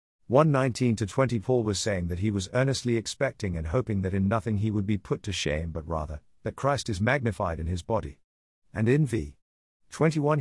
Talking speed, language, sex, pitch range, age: 190 wpm, English, male, 95-130 Hz, 50-69